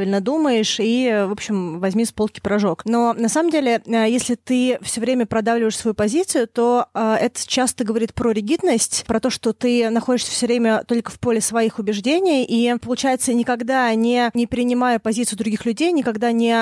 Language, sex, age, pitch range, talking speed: Russian, female, 20-39, 220-250 Hz, 175 wpm